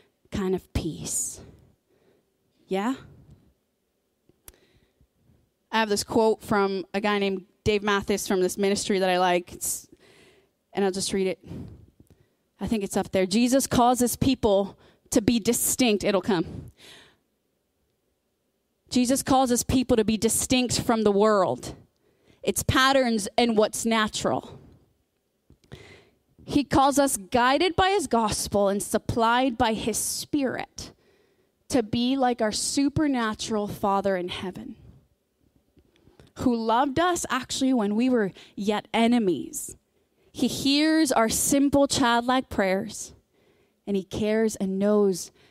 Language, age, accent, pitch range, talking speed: English, 30-49, American, 200-255 Hz, 120 wpm